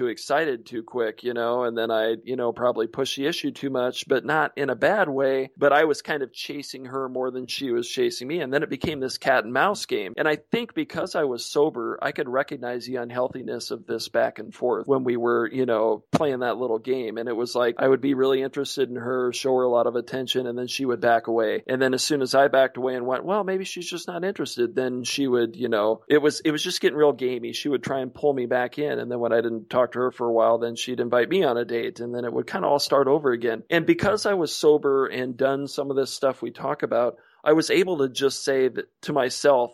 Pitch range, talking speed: 125-145 Hz, 270 wpm